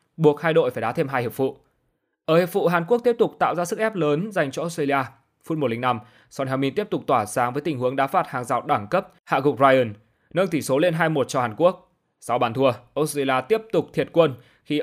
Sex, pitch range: male, 130-170 Hz